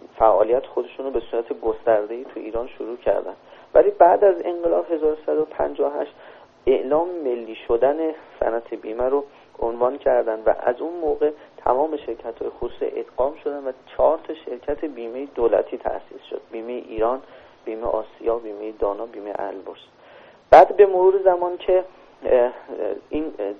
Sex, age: male, 40-59